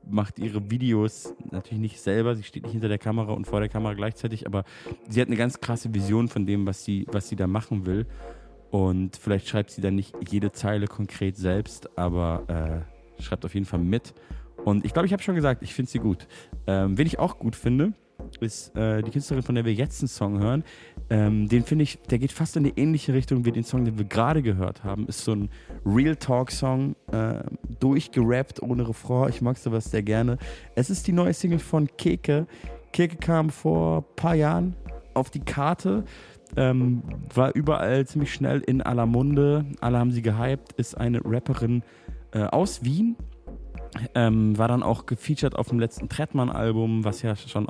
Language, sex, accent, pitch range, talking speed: German, male, German, 105-130 Hz, 200 wpm